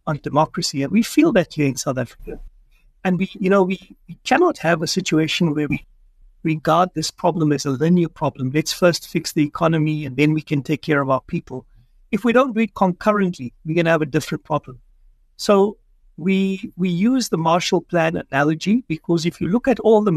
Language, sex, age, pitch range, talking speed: English, male, 60-79, 155-200 Hz, 210 wpm